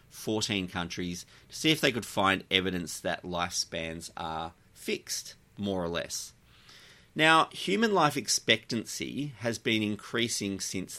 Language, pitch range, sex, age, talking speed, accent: English, 90-115 Hz, male, 30-49, 130 wpm, Australian